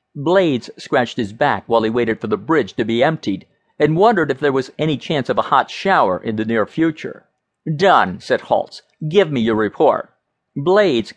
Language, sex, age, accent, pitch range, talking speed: English, male, 50-69, American, 130-185 Hz, 195 wpm